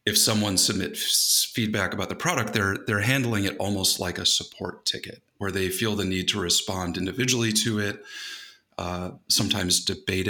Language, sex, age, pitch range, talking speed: English, male, 30-49, 90-105 Hz, 170 wpm